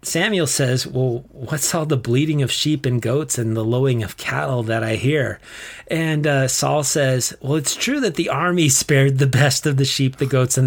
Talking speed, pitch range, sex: 215 wpm, 120-155 Hz, male